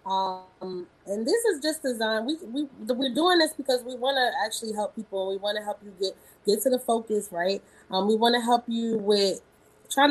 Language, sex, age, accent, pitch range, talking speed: English, female, 20-39, American, 180-255 Hz, 220 wpm